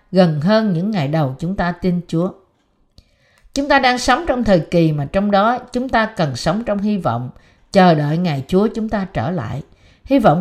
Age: 50-69